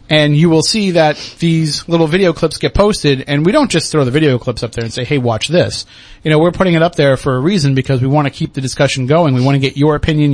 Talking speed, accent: 290 wpm, American